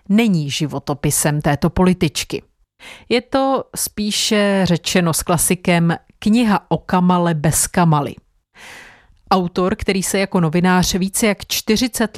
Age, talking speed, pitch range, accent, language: 40-59, 115 wpm, 155-195 Hz, native, Czech